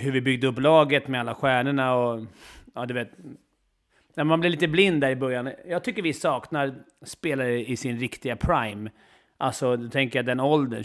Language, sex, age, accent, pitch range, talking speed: Swedish, male, 30-49, native, 120-160 Hz, 195 wpm